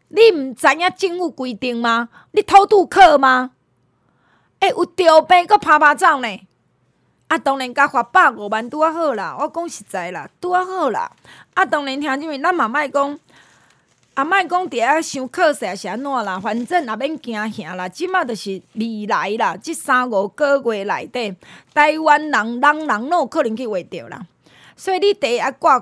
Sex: female